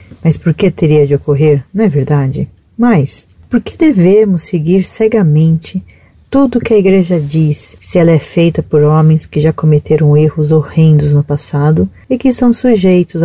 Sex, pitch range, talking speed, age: female, 150-190 Hz, 170 wpm, 40-59